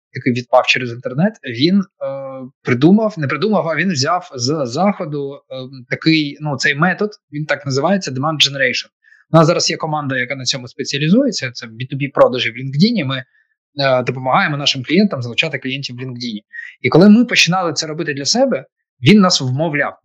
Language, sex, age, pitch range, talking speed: Ukrainian, male, 20-39, 130-185 Hz, 175 wpm